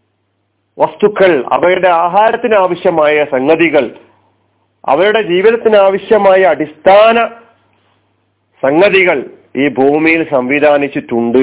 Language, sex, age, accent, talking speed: Malayalam, male, 40-59, native, 60 wpm